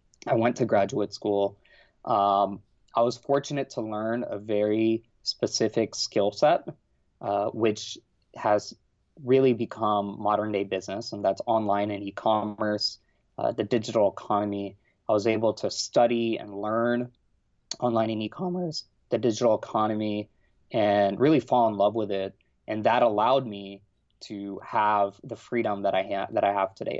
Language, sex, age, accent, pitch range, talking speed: English, male, 20-39, American, 100-115 Hz, 155 wpm